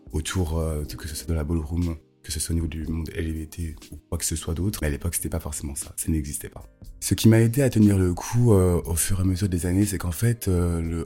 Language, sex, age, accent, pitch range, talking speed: French, male, 20-39, French, 80-95 Hz, 290 wpm